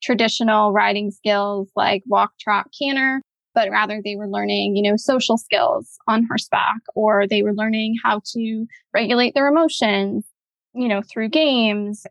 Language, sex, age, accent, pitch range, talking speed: English, female, 20-39, American, 210-235 Hz, 155 wpm